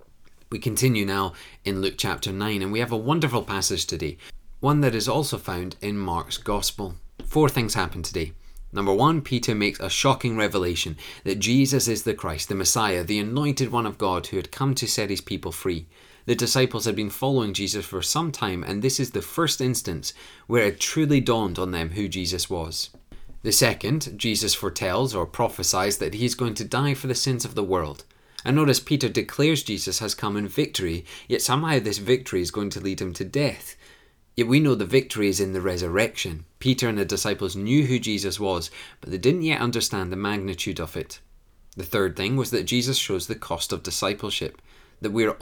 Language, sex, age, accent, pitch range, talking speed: English, male, 30-49, British, 95-125 Hz, 205 wpm